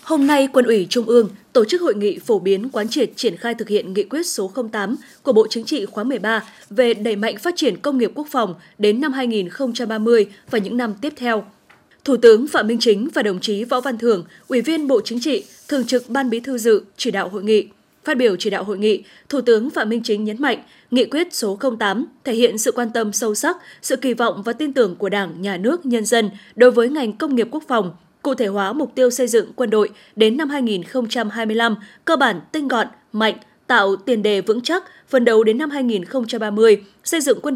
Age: 20-39